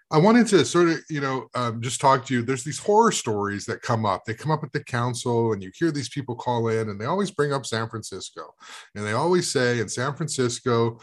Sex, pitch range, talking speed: male, 105-125 Hz, 250 wpm